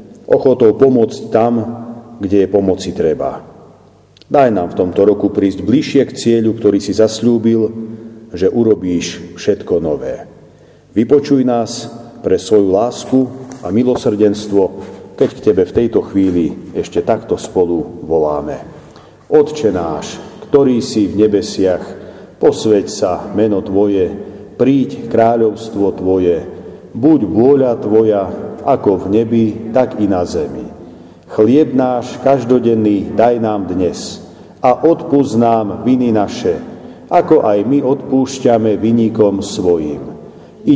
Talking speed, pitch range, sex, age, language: 120 wpm, 105-130 Hz, male, 40-59, Slovak